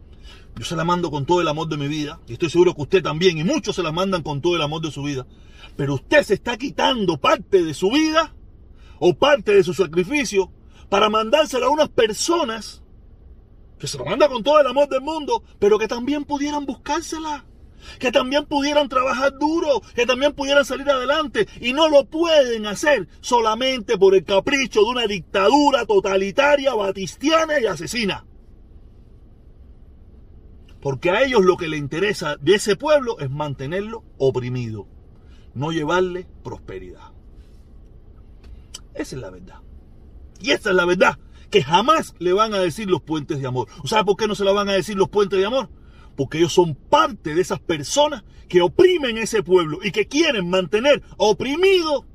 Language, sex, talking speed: Spanish, male, 175 wpm